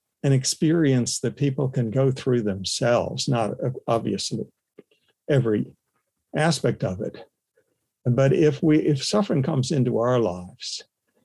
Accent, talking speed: American, 125 wpm